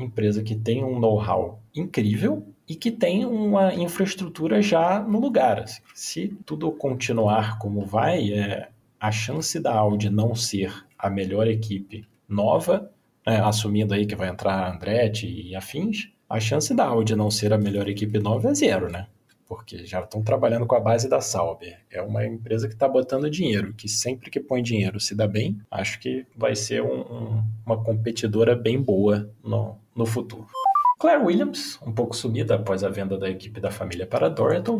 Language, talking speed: Portuguese, 175 wpm